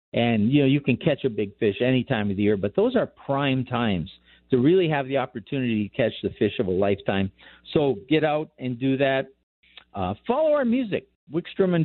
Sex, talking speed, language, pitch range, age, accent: male, 220 wpm, English, 130-175 Hz, 50-69, American